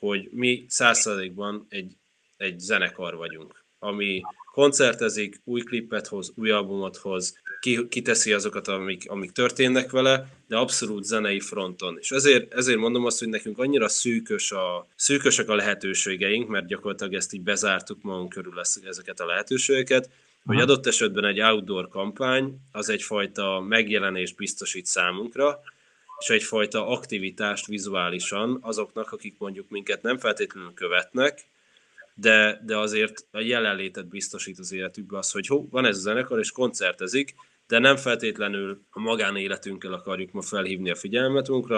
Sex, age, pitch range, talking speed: male, 20-39, 100-130 Hz, 135 wpm